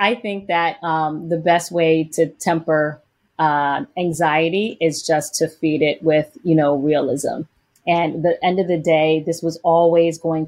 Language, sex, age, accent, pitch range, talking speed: English, female, 30-49, American, 165-190 Hz, 180 wpm